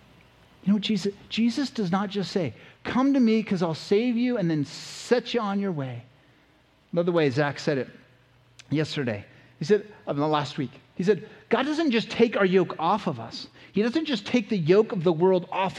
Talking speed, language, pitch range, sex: 210 wpm, English, 165-250 Hz, male